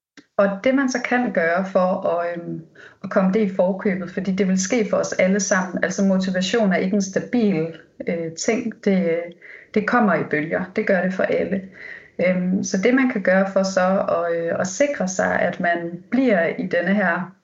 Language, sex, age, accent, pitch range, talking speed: Danish, female, 30-49, native, 180-210 Hz, 205 wpm